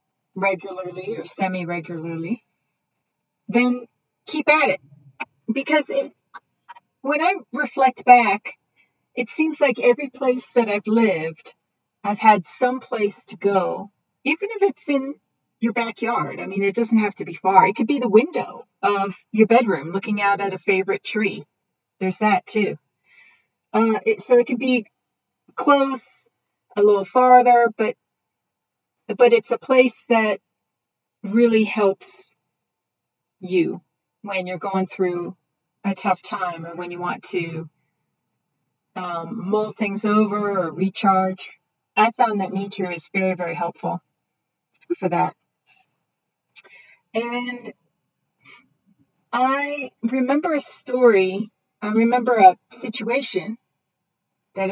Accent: American